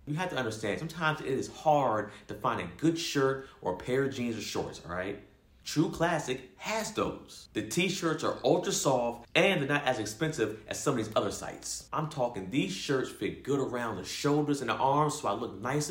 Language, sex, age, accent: English, male, 30-49, American